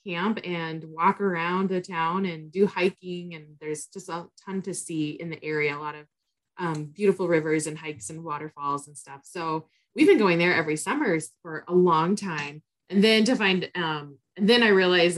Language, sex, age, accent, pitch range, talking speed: English, female, 20-39, American, 160-200 Hz, 200 wpm